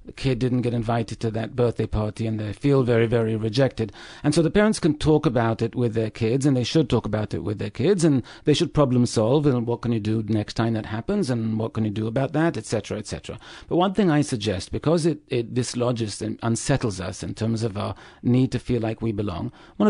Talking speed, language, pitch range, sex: 240 wpm, English, 105-130 Hz, male